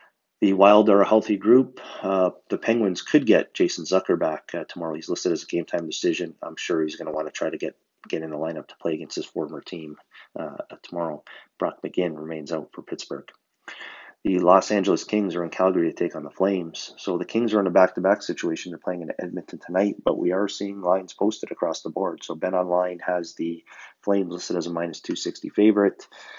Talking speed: 215 wpm